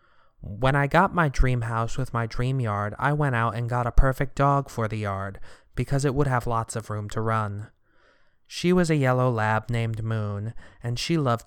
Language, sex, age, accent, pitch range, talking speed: English, male, 20-39, American, 115-140 Hz, 210 wpm